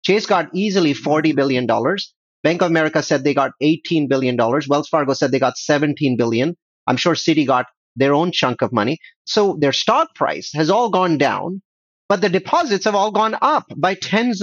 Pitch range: 145-205 Hz